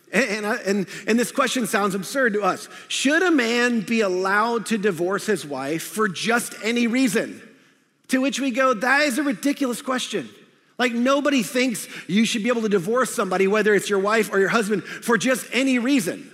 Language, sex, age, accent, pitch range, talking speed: English, male, 40-59, American, 185-245 Hz, 185 wpm